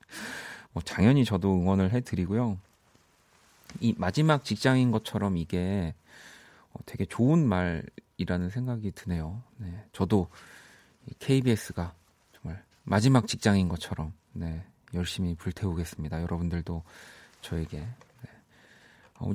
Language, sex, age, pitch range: Korean, male, 40-59, 90-120 Hz